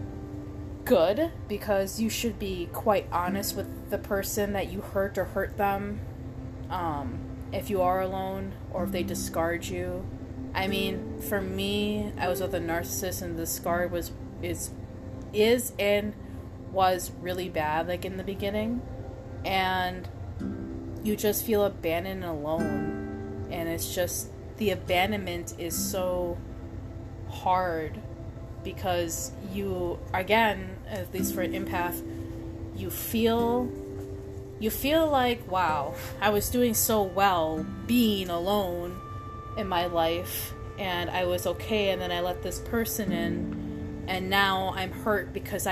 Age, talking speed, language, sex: 20-39, 135 wpm, English, female